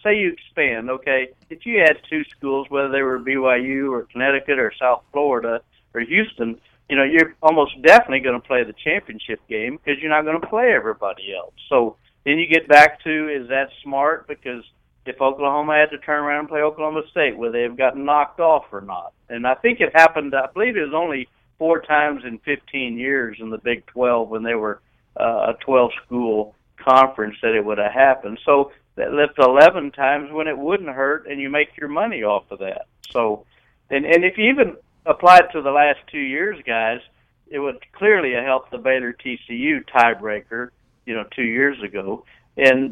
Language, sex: English, male